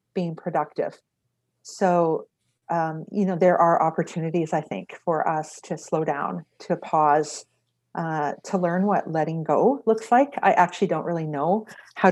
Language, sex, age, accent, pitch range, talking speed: English, female, 50-69, American, 155-190 Hz, 160 wpm